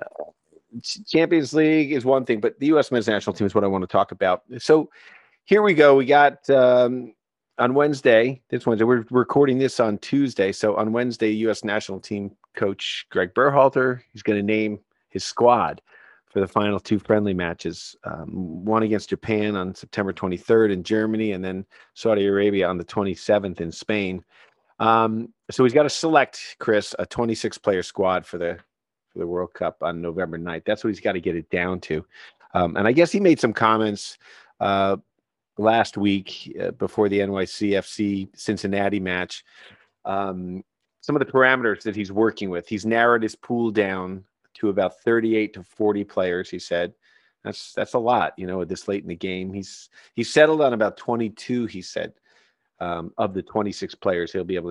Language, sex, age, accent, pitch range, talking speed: English, male, 40-59, American, 95-120 Hz, 185 wpm